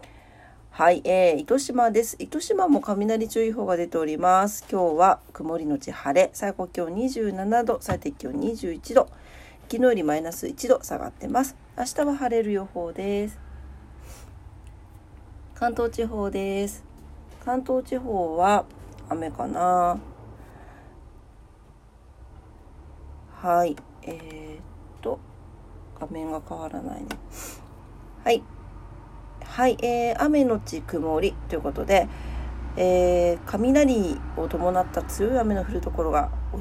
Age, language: 40-59, Japanese